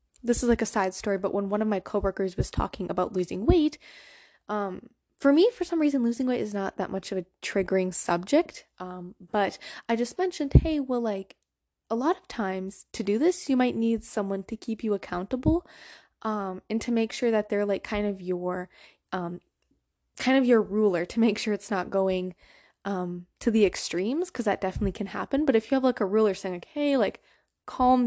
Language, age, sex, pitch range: English, 20-39, female, 190-250 Hz